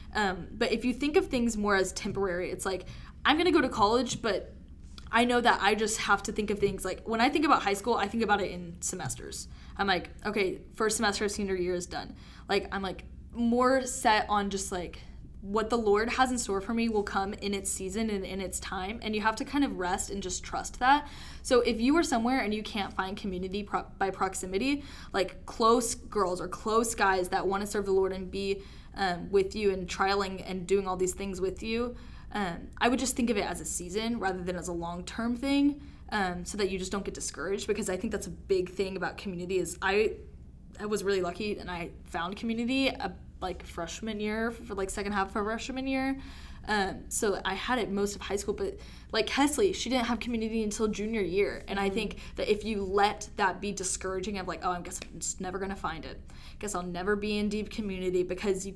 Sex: female